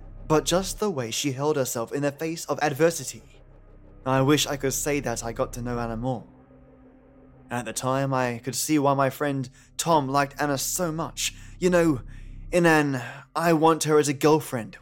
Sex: male